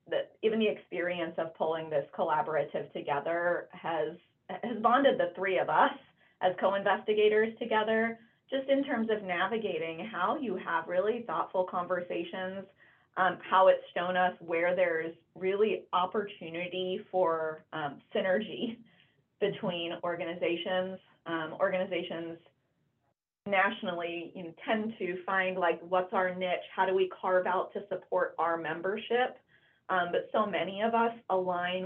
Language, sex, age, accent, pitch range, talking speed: English, female, 20-39, American, 170-220 Hz, 135 wpm